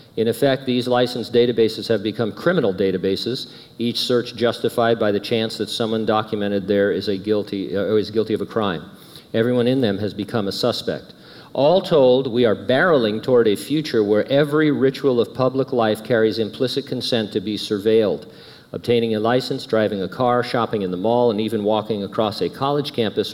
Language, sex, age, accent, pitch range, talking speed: English, male, 50-69, American, 105-125 Hz, 185 wpm